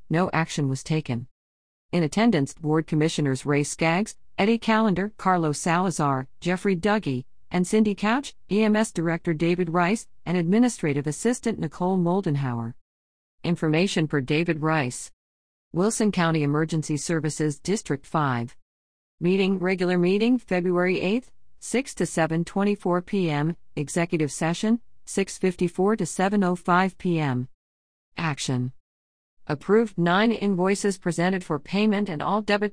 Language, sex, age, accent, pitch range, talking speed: English, female, 50-69, American, 145-185 Hz, 115 wpm